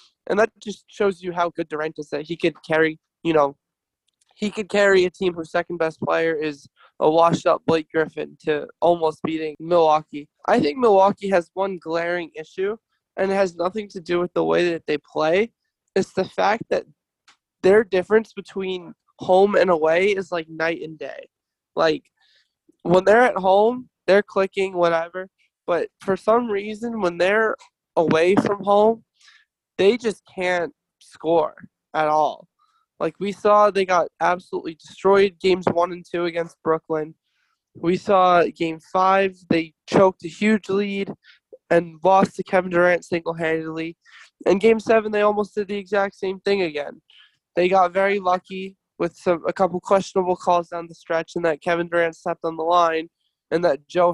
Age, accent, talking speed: 20-39, American, 165 wpm